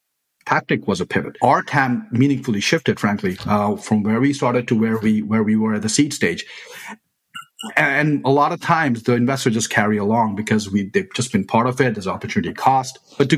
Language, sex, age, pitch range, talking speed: English, male, 40-59, 110-140 Hz, 210 wpm